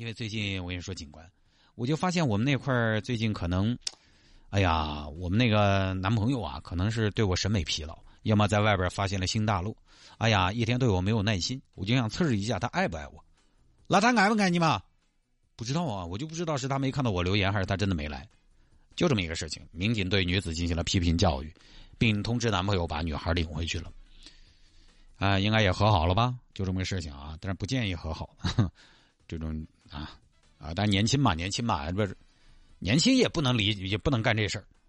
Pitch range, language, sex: 90-125 Hz, Chinese, male